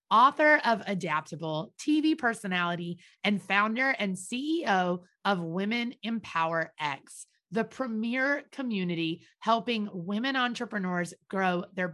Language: English